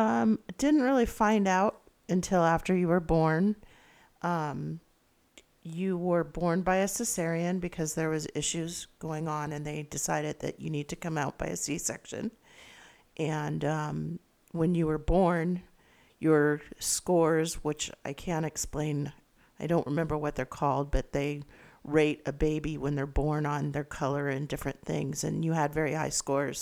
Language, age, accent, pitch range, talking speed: English, 50-69, American, 150-175 Hz, 165 wpm